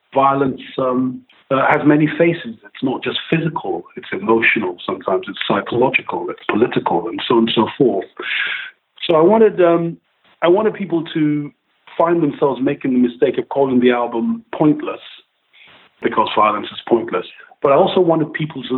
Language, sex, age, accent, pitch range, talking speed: English, male, 40-59, British, 115-140 Hz, 165 wpm